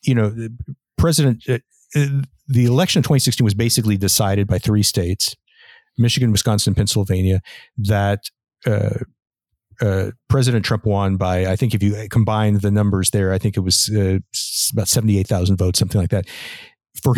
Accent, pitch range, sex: American, 100-125 Hz, male